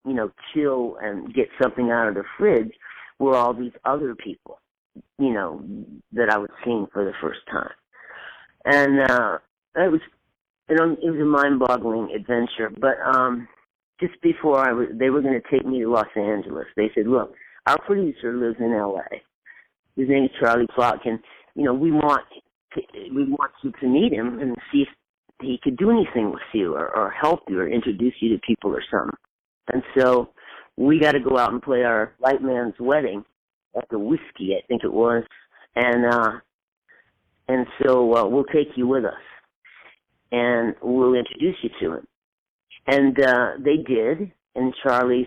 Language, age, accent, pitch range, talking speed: English, 50-69, American, 120-140 Hz, 180 wpm